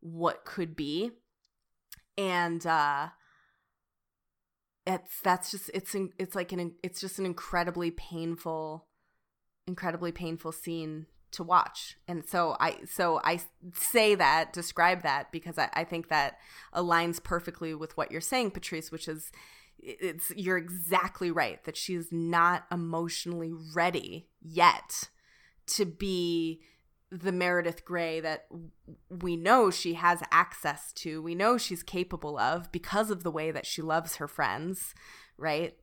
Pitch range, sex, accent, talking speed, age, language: 160-185 Hz, female, American, 135 wpm, 20-39, English